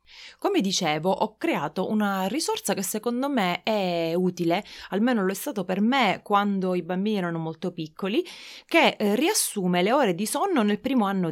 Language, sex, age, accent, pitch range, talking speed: Italian, female, 20-39, native, 165-200 Hz, 170 wpm